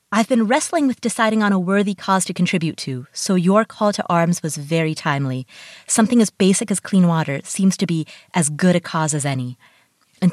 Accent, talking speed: American, 210 wpm